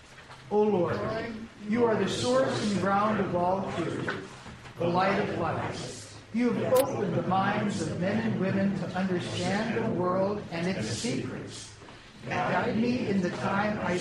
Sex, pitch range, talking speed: male, 185-220 Hz, 160 wpm